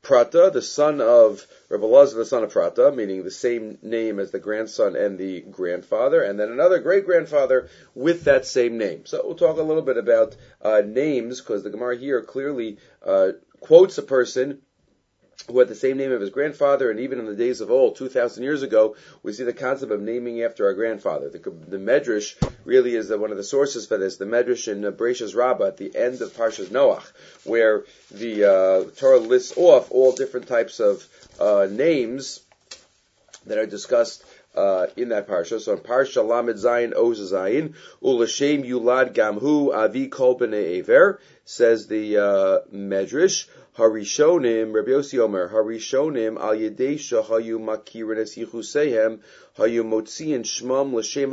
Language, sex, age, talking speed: English, male, 40-59, 165 wpm